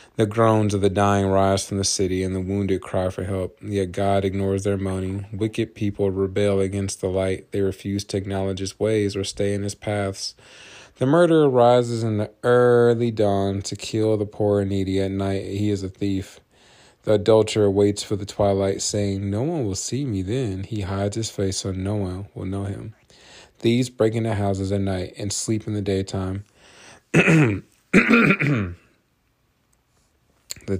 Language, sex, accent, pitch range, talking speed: English, male, American, 100-110 Hz, 175 wpm